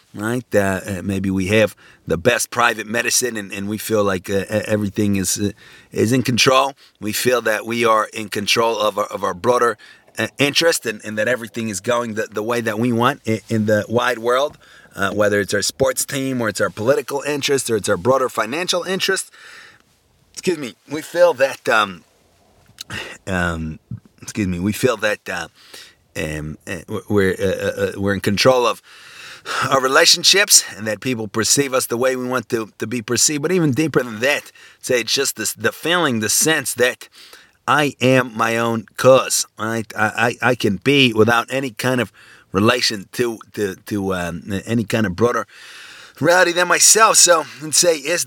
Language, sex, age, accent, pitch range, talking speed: English, male, 30-49, American, 105-135 Hz, 185 wpm